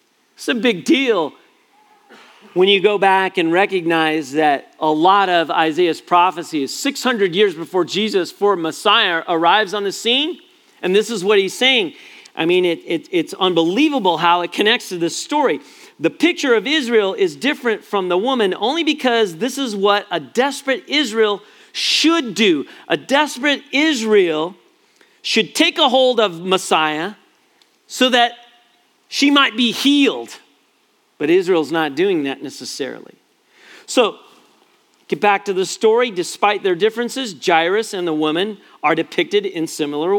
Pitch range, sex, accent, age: 190-295 Hz, male, American, 40-59